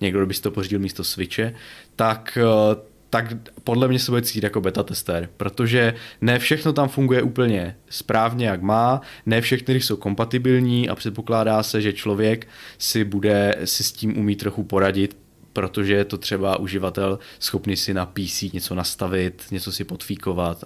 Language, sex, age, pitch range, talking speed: Czech, male, 20-39, 100-115 Hz, 165 wpm